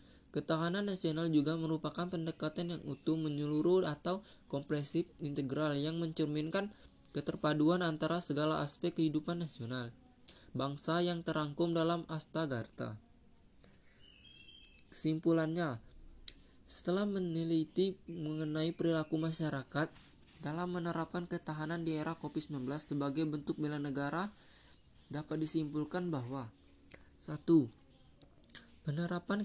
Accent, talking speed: native, 90 wpm